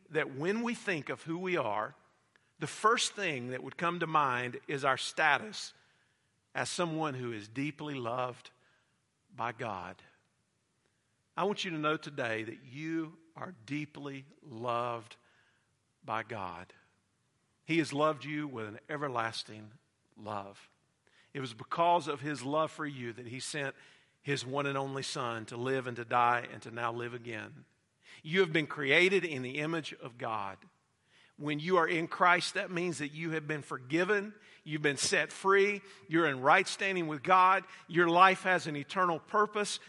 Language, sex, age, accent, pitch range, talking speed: English, male, 50-69, American, 130-190 Hz, 165 wpm